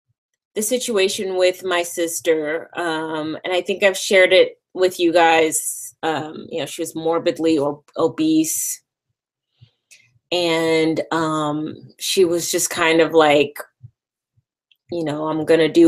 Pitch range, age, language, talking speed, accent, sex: 155-185 Hz, 20-39, English, 130 wpm, American, female